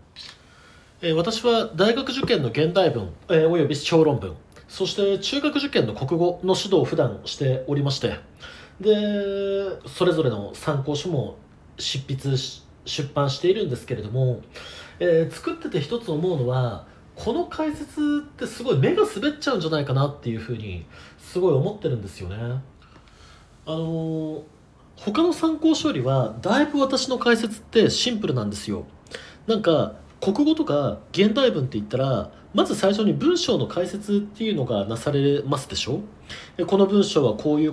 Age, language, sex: 40-59, Japanese, male